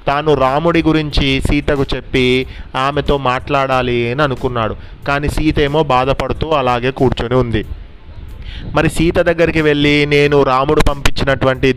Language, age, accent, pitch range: Telugu, 30-49, native, 120-145 Hz